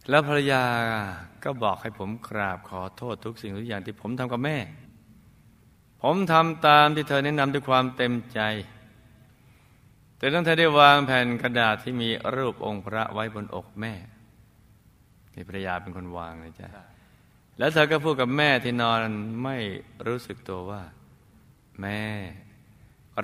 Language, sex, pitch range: Thai, male, 100-125 Hz